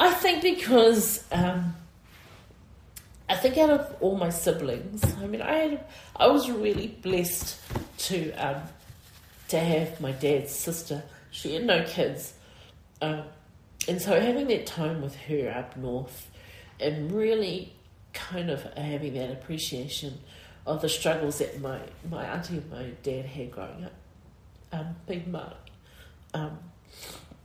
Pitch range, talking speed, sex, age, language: 110-170 Hz, 140 wpm, female, 40-59, English